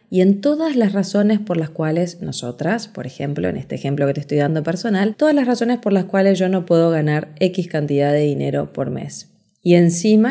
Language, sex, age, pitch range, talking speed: Spanish, female, 20-39, 155-215 Hz, 215 wpm